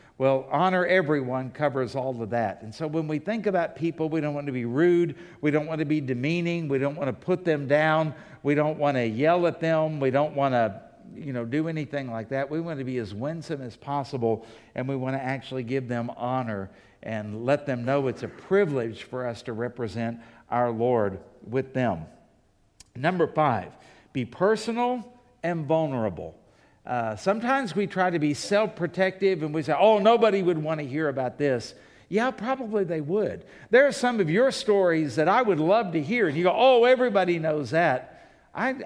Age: 60-79